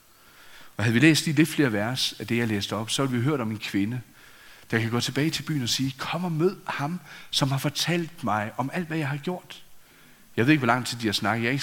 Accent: native